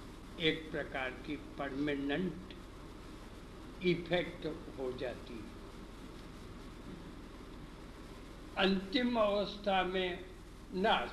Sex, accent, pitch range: male, native, 135-185 Hz